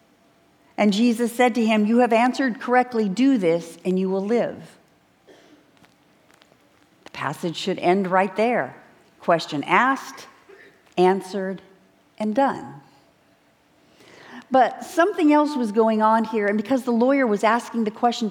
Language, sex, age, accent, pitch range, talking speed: English, female, 50-69, American, 195-250 Hz, 135 wpm